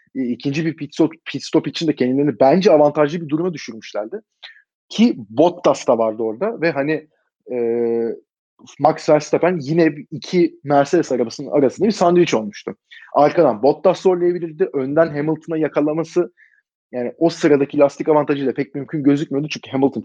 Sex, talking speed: male, 135 wpm